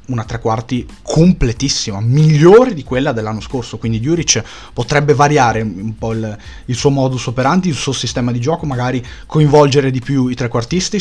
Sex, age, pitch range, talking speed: male, 20-39, 110-135 Hz, 165 wpm